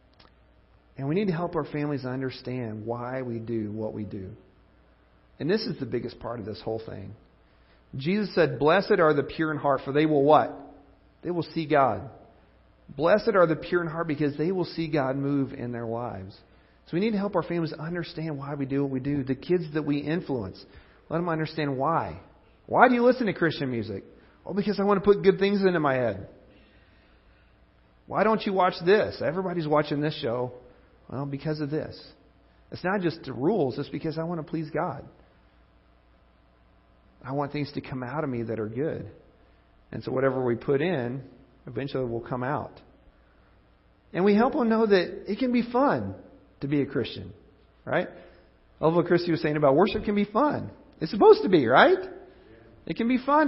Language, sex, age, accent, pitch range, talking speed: English, male, 40-59, American, 120-175 Hz, 200 wpm